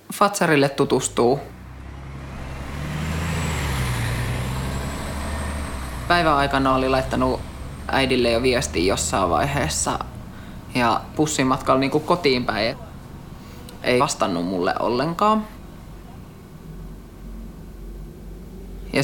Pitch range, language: 115-150 Hz, Finnish